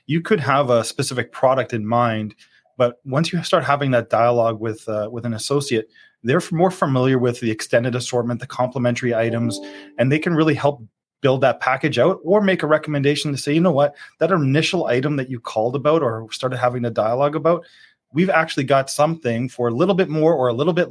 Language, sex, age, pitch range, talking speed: English, male, 30-49, 115-145 Hz, 210 wpm